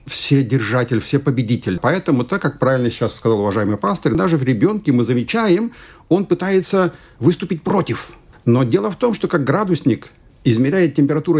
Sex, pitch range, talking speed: male, 115-165 Hz, 160 wpm